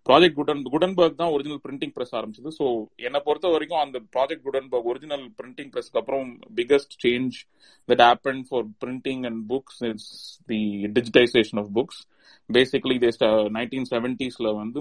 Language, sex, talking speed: Tamil, male, 65 wpm